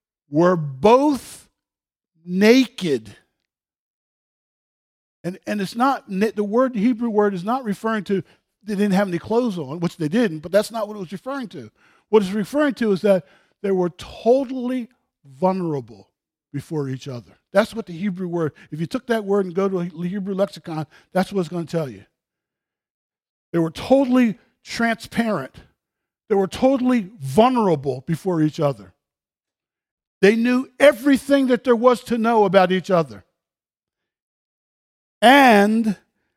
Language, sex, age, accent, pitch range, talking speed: English, male, 50-69, American, 165-220 Hz, 150 wpm